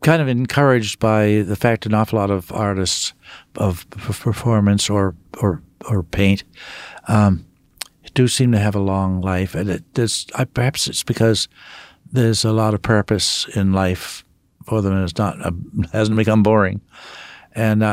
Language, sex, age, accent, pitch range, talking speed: English, male, 60-79, American, 95-115 Hz, 155 wpm